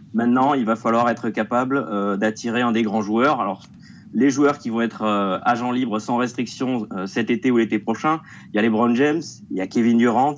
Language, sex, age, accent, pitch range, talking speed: French, male, 30-49, French, 110-140 Hz, 230 wpm